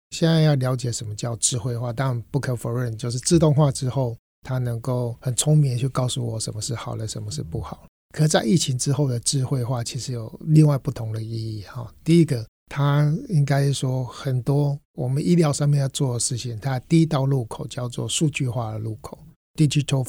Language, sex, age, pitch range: Chinese, male, 60-79, 115-140 Hz